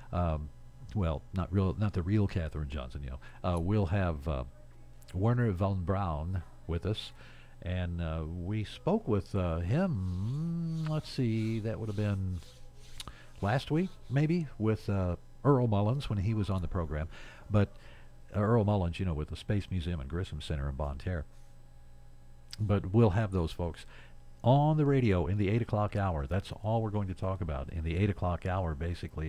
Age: 50-69